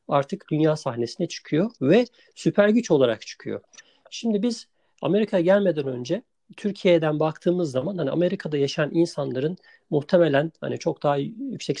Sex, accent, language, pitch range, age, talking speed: male, native, Turkish, 140-185 Hz, 50-69, 130 wpm